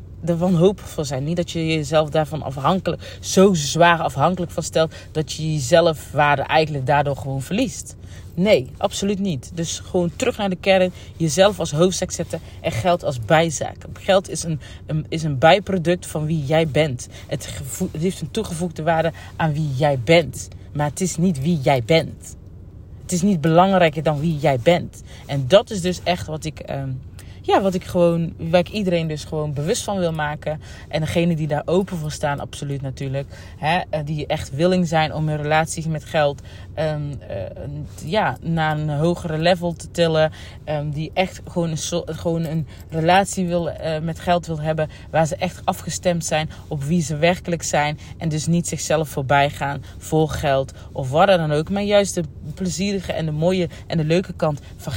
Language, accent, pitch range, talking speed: Dutch, Dutch, 145-175 Hz, 190 wpm